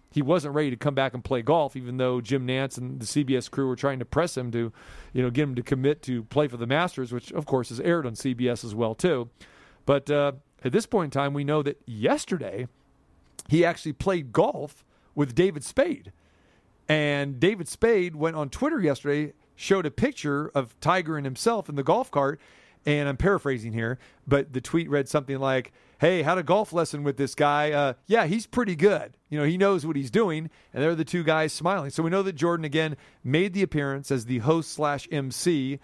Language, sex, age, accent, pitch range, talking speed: English, male, 40-59, American, 130-165 Hz, 220 wpm